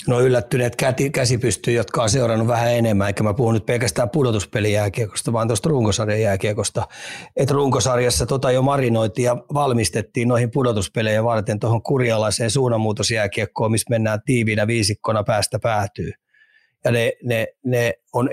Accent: native